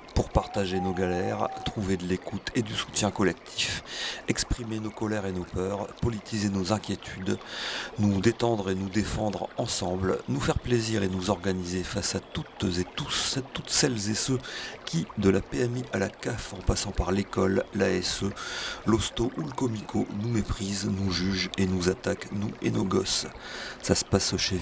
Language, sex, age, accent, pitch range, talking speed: French, male, 40-59, French, 95-115 Hz, 180 wpm